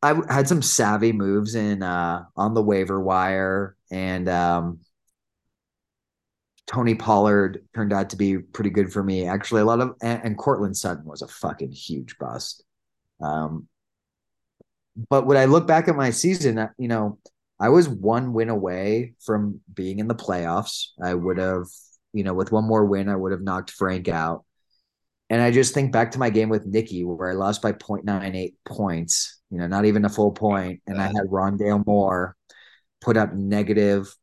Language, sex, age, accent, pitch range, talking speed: English, male, 30-49, American, 95-115 Hz, 180 wpm